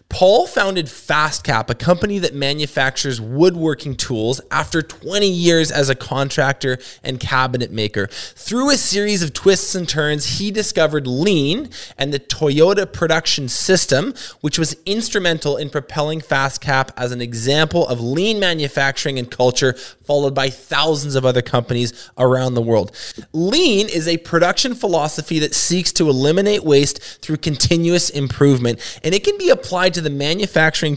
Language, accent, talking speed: English, American, 150 wpm